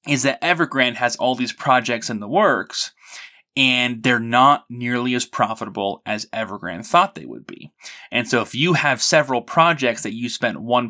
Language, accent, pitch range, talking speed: English, American, 110-130 Hz, 180 wpm